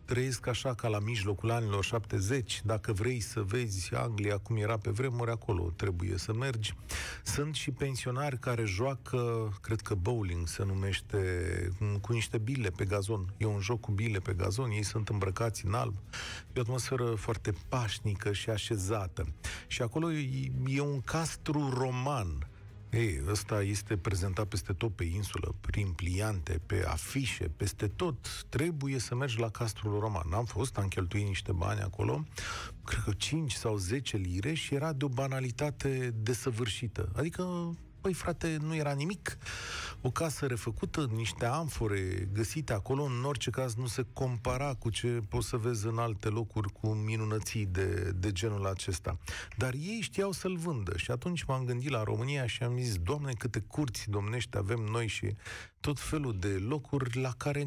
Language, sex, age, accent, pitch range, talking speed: Romanian, male, 40-59, native, 100-130 Hz, 165 wpm